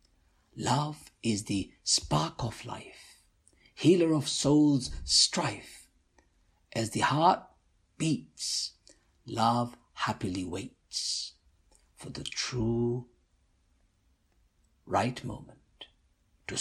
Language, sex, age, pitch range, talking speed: English, male, 60-79, 80-115 Hz, 85 wpm